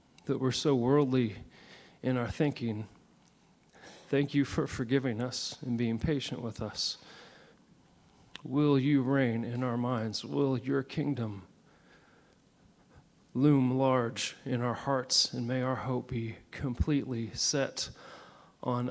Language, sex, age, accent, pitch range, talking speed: English, male, 40-59, American, 120-140 Hz, 125 wpm